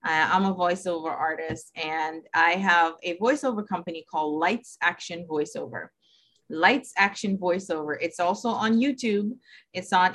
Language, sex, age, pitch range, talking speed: English, female, 30-49, 180-235 Hz, 135 wpm